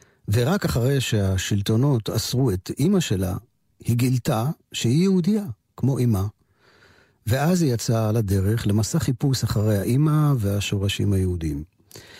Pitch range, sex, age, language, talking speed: 105-145 Hz, male, 50-69, Hebrew, 120 wpm